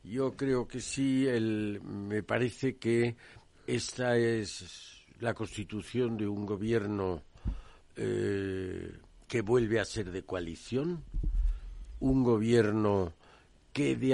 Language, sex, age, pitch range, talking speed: Spanish, male, 60-79, 105-130 Hz, 100 wpm